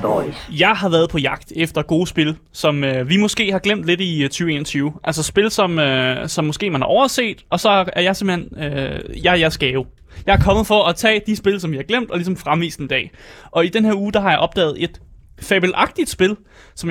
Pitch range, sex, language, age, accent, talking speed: 155-200 Hz, male, Danish, 20-39, native, 220 wpm